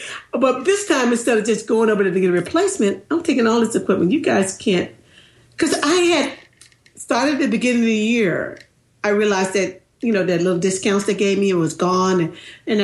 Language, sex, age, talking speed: English, female, 50-69, 205 wpm